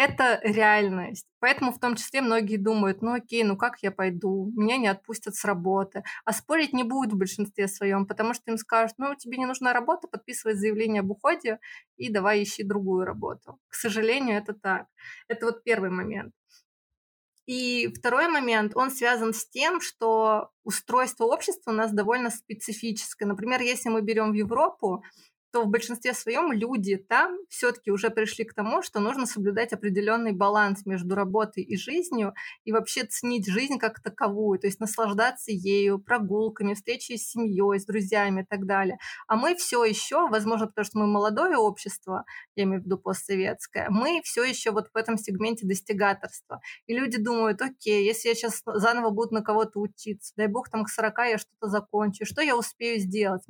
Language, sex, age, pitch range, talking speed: Russian, female, 20-39, 205-240 Hz, 180 wpm